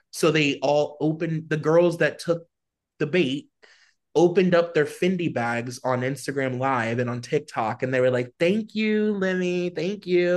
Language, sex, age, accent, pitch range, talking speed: English, male, 20-39, American, 120-160 Hz, 175 wpm